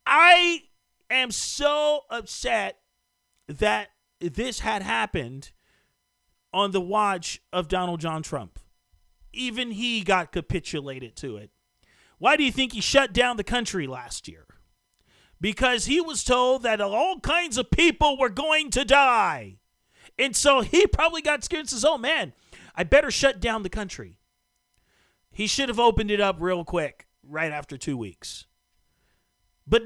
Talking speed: 150 wpm